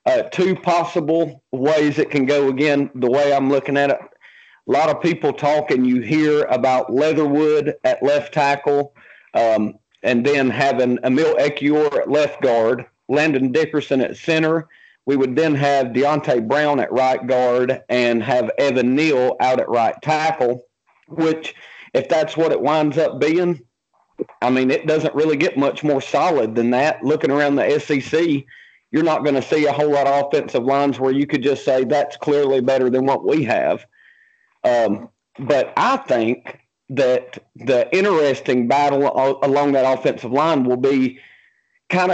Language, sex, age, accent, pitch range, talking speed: English, male, 40-59, American, 130-155 Hz, 170 wpm